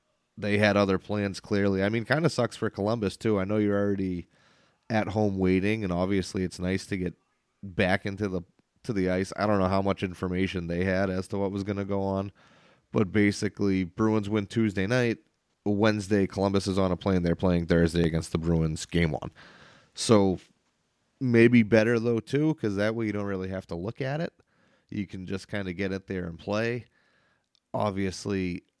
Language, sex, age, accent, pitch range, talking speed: English, male, 30-49, American, 90-105 Hz, 195 wpm